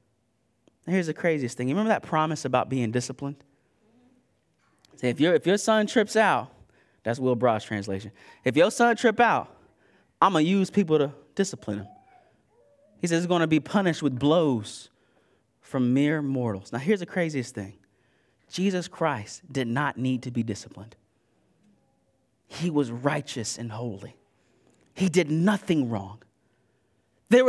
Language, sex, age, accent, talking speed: English, male, 30-49, American, 150 wpm